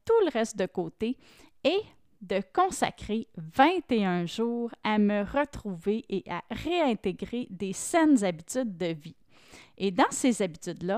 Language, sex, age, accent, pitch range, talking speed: French, female, 30-49, Canadian, 190-260 Hz, 130 wpm